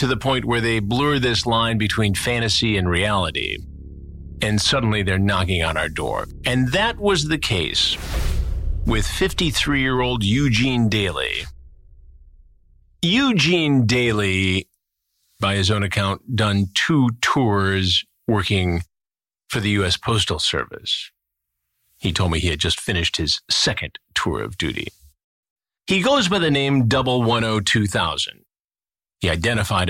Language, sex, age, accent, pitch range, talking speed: English, male, 40-59, American, 85-115 Hz, 125 wpm